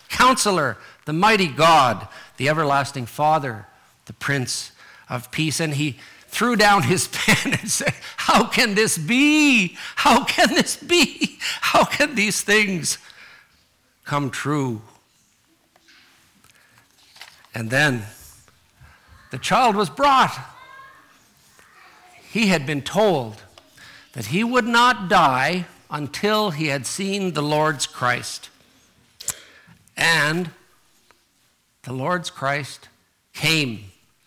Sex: male